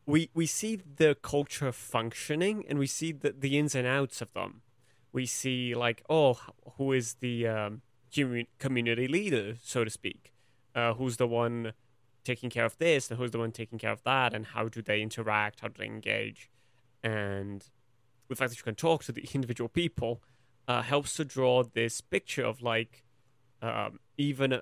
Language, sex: English, male